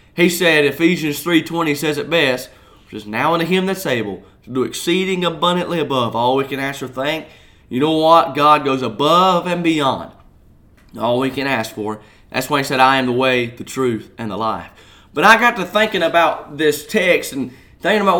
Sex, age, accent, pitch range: male, 30-49, American, 130-175 Hz